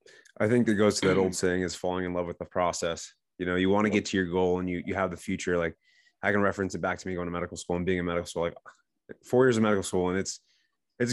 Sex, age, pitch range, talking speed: male, 20-39, 90-110 Hz, 300 wpm